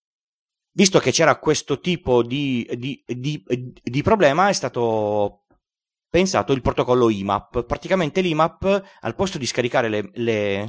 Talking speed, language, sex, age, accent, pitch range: 120 wpm, Italian, male, 30-49, native, 105-140 Hz